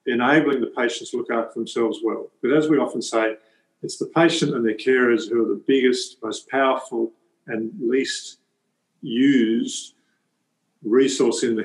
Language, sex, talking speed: English, male, 160 wpm